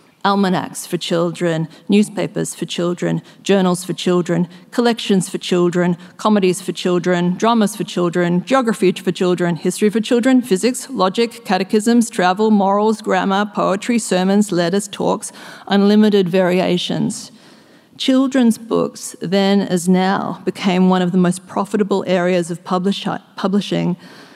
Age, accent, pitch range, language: 40-59, Australian, 180-205 Hz, English